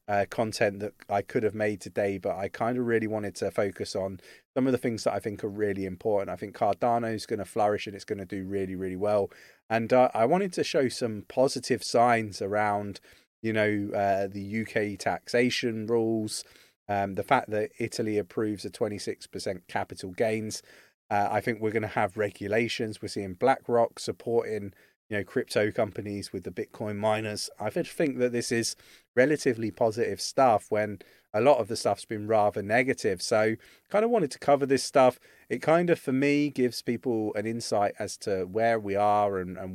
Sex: male